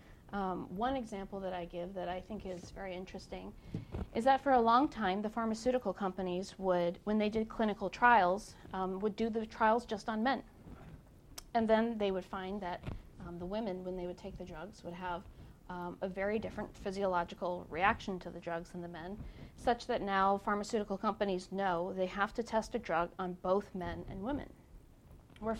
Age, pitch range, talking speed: 40-59, 185-220 Hz, 190 wpm